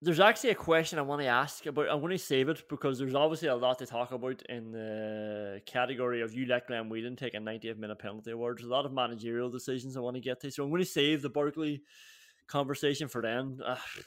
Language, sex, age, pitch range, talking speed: English, male, 20-39, 130-195 Hz, 250 wpm